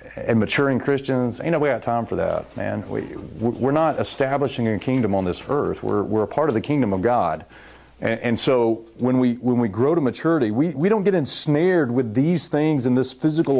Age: 40-59